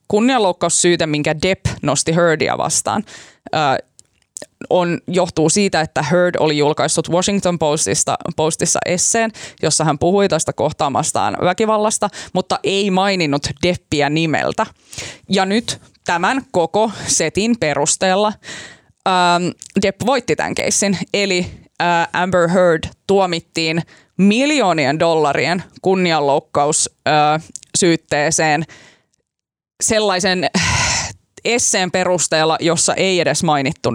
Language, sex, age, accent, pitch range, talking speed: Finnish, female, 20-39, native, 160-190 Hz, 90 wpm